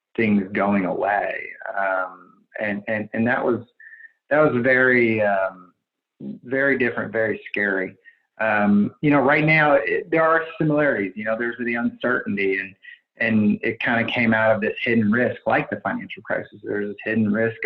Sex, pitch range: male, 105-130 Hz